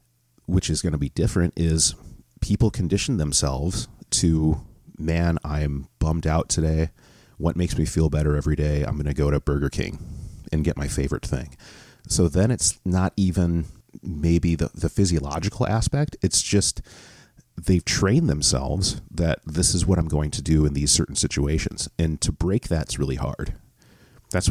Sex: male